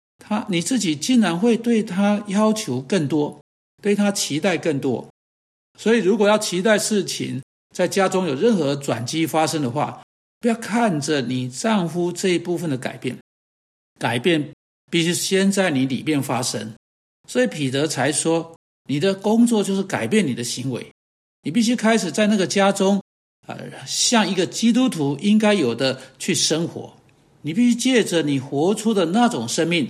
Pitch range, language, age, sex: 145-215 Hz, Chinese, 60-79, male